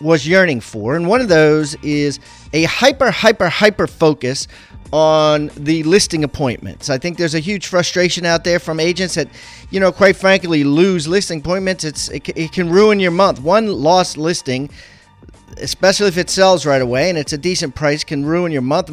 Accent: American